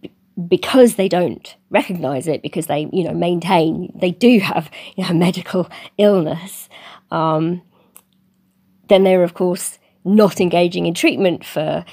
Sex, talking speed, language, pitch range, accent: female, 130 wpm, English, 170-195 Hz, British